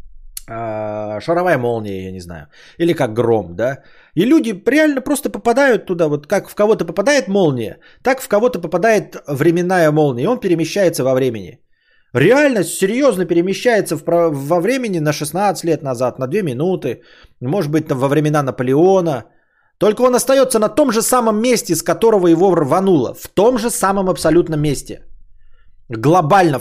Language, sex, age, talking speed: Bulgarian, male, 20-39, 155 wpm